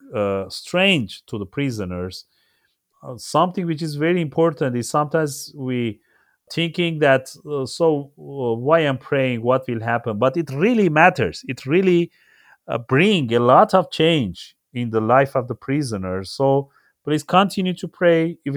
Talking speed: 160 wpm